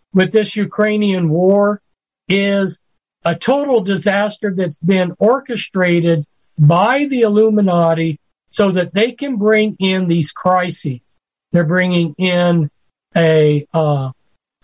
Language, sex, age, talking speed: English, male, 40-59, 110 wpm